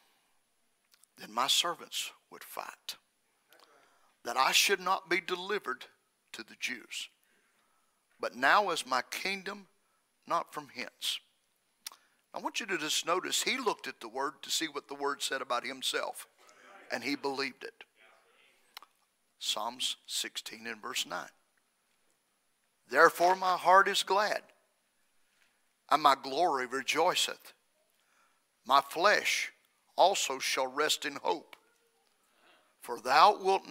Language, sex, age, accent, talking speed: English, male, 50-69, American, 125 wpm